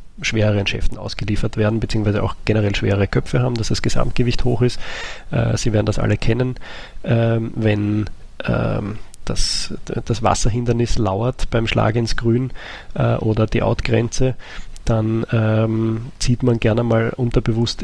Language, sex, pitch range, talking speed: German, male, 110-125 Hz, 145 wpm